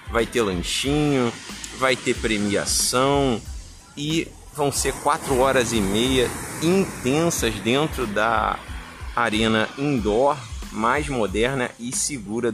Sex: male